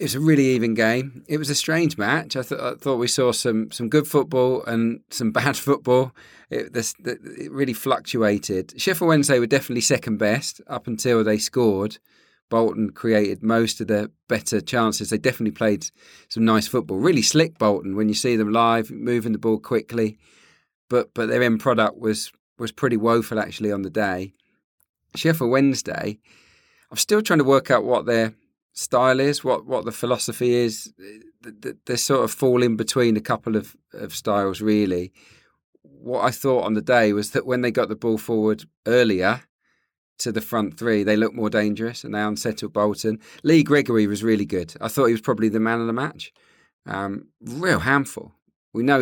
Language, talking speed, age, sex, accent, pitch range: English, 190 wpm, 40-59, male, British, 105-130 Hz